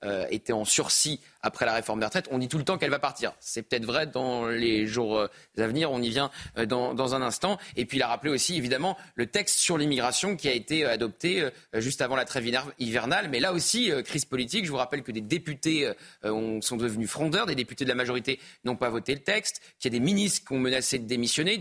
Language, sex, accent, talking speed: French, male, French, 240 wpm